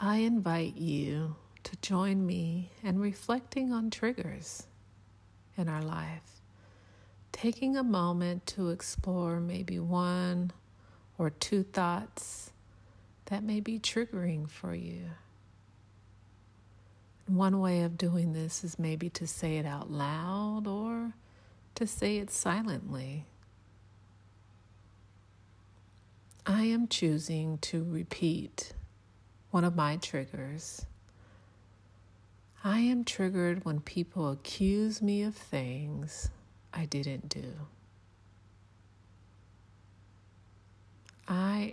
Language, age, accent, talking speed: English, 50-69, American, 100 wpm